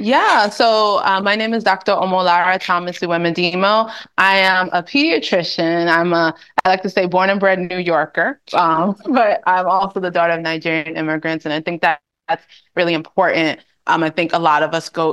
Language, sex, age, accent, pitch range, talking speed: English, female, 20-39, American, 160-185 Hz, 195 wpm